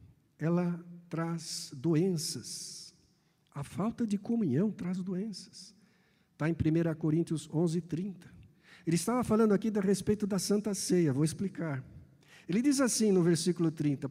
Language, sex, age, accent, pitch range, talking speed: Portuguese, male, 60-79, Brazilian, 145-200 Hz, 135 wpm